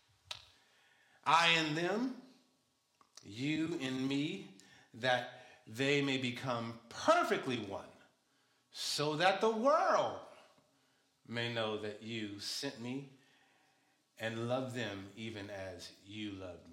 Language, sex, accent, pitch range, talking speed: English, male, American, 125-200 Hz, 105 wpm